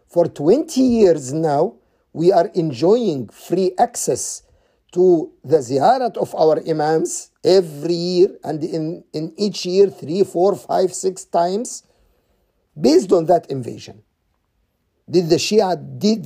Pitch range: 150-200 Hz